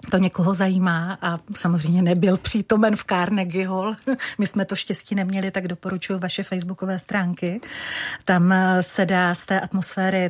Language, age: Czech, 40-59